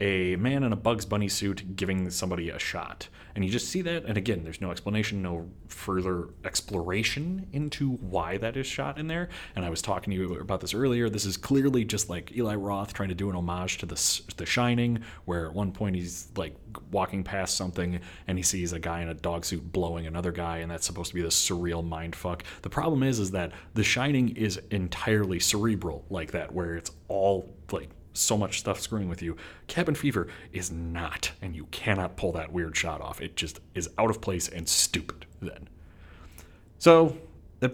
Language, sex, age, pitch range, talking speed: English, male, 30-49, 90-115 Hz, 205 wpm